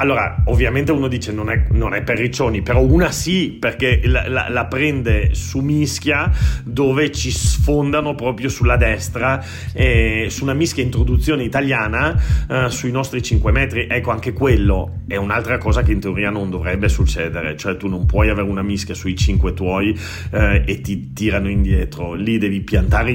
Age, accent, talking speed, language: 40-59, native, 170 wpm, Italian